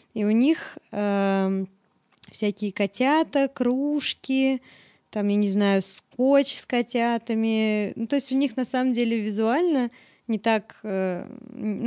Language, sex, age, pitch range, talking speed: Russian, female, 20-39, 205-255 Hz, 130 wpm